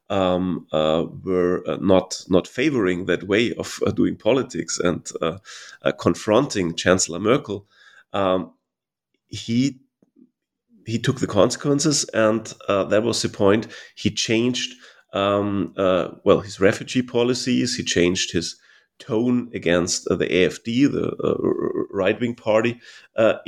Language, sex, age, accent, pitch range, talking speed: English, male, 30-49, German, 95-125 Hz, 135 wpm